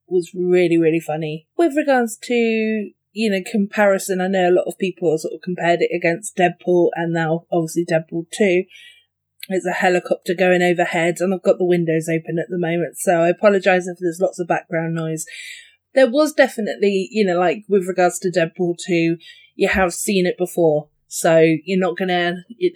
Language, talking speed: English, 185 wpm